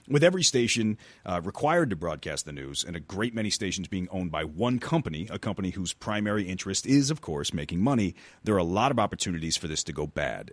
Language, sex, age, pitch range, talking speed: English, male, 30-49, 85-120 Hz, 230 wpm